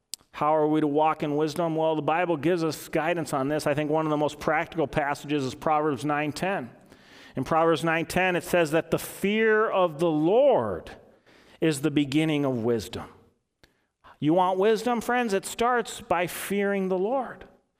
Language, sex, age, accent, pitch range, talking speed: English, male, 40-59, American, 165-230 Hz, 175 wpm